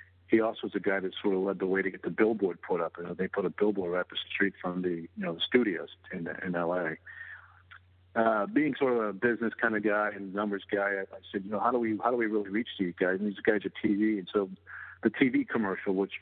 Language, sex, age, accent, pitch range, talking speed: English, male, 50-69, American, 95-105 Hz, 270 wpm